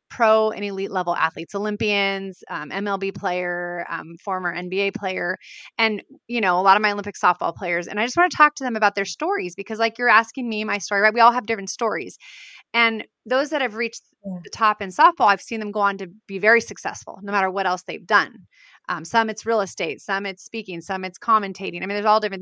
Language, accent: English, American